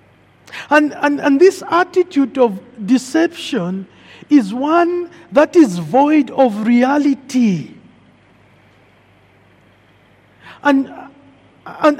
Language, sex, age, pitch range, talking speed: English, male, 50-69, 200-305 Hz, 80 wpm